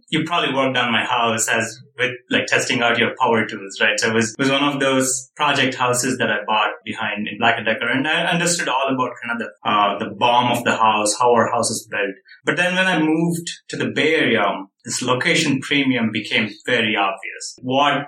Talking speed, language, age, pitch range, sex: 225 wpm, English, 30-49, 115-150 Hz, male